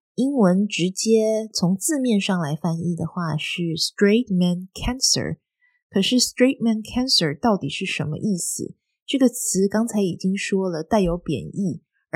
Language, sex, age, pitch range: Chinese, female, 20-39, 175-225 Hz